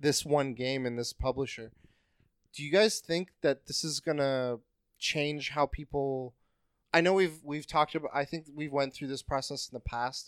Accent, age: American, 30-49